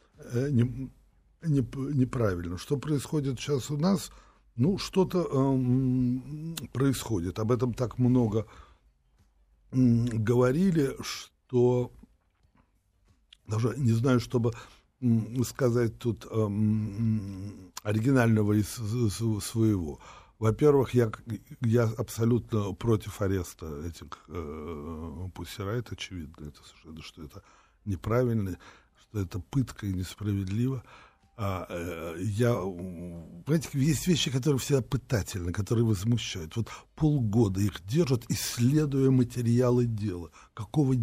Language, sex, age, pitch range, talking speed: Russian, male, 60-79, 100-125 Hz, 95 wpm